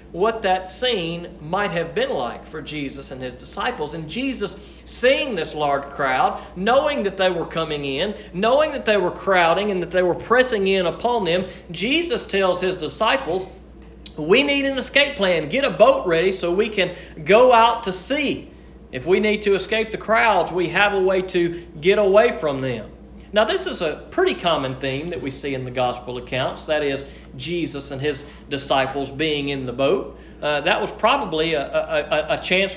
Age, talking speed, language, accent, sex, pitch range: 40-59, 190 wpm, English, American, male, 145-195 Hz